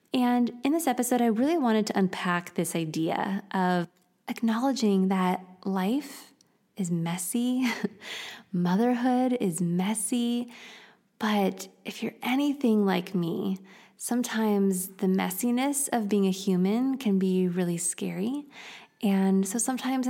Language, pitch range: English, 185-225 Hz